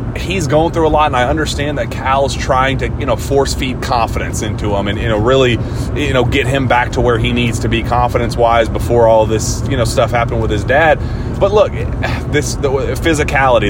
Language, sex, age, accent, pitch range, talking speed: English, male, 30-49, American, 115-135 Hz, 225 wpm